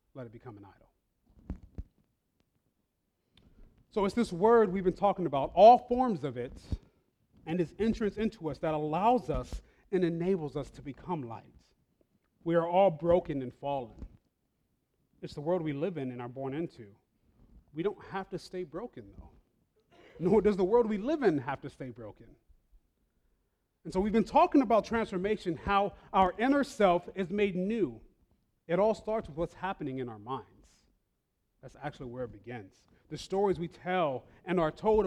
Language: English